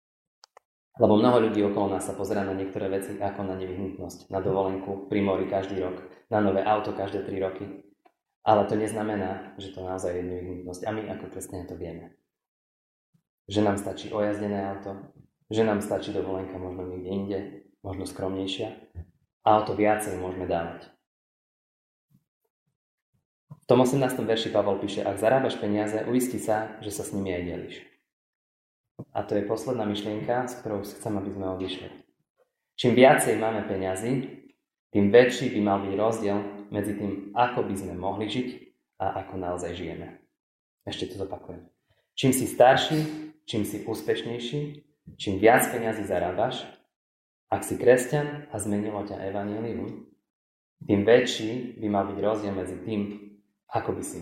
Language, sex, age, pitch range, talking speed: Slovak, male, 20-39, 95-110 Hz, 155 wpm